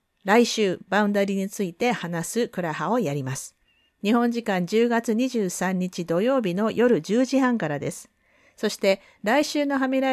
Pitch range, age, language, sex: 175-240 Hz, 50-69, Japanese, female